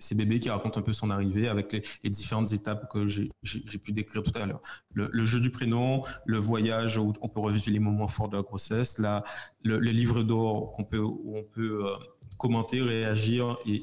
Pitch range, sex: 110-130 Hz, male